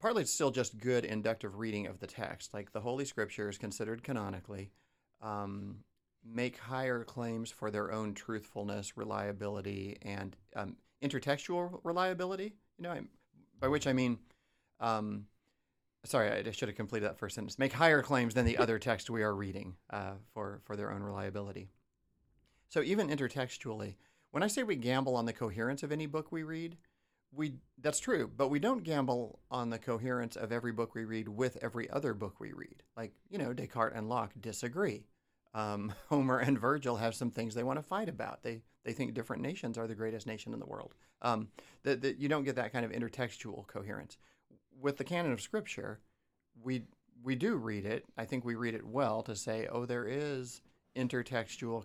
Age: 40-59